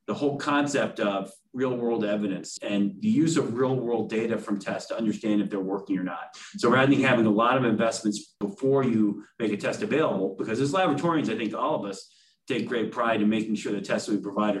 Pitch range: 105-140 Hz